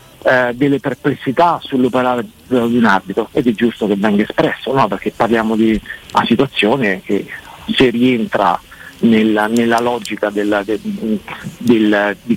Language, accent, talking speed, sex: Italian, native, 130 wpm, male